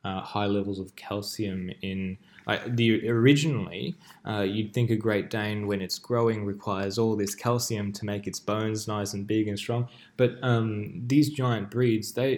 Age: 10-29